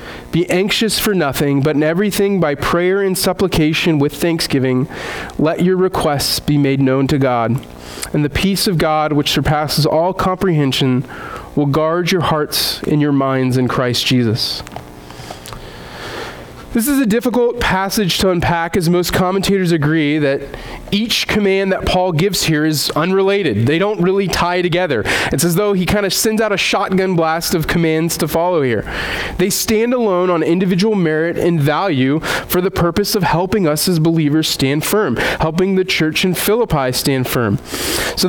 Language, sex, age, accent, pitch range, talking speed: English, male, 30-49, American, 150-195 Hz, 170 wpm